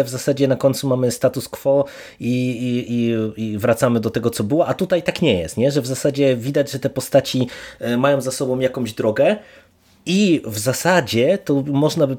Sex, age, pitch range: male, 30-49, 110-135 Hz